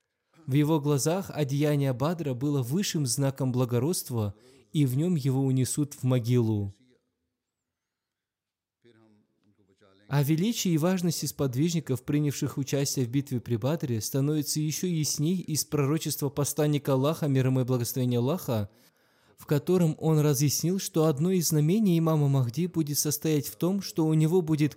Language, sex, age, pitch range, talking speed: Russian, male, 20-39, 125-160 Hz, 135 wpm